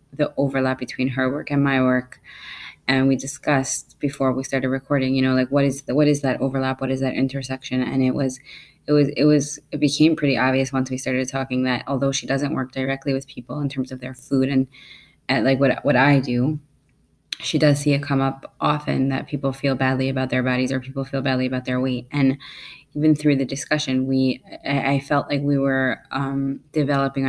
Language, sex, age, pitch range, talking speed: English, female, 20-39, 130-140 Hz, 215 wpm